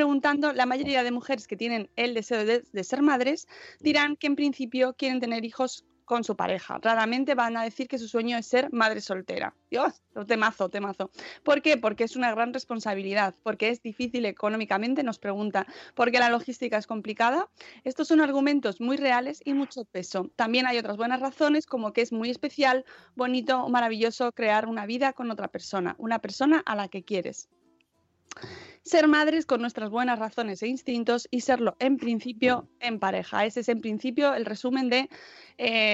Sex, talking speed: female, 185 wpm